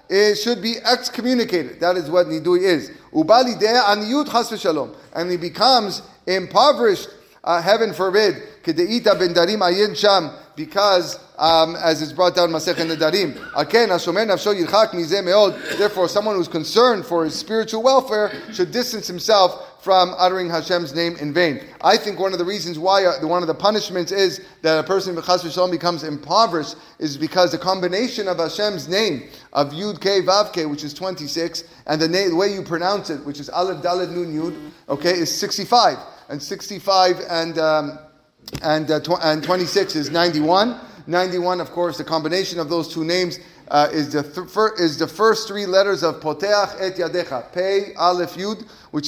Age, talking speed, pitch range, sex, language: 30-49, 150 wpm, 160-200 Hz, male, English